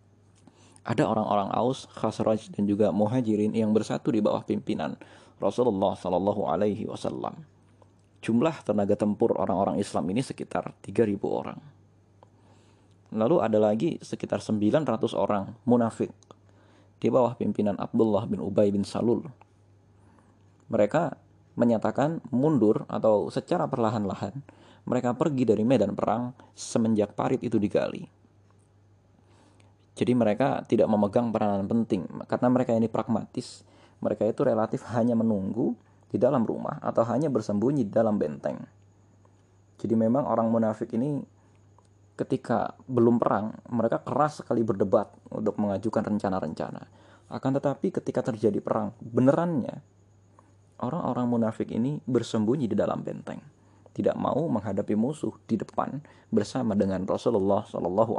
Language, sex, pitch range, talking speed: Indonesian, male, 100-115 Hz, 120 wpm